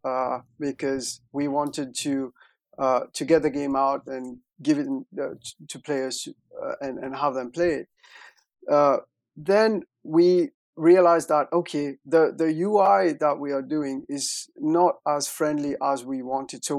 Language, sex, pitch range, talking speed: English, male, 135-165 Hz, 165 wpm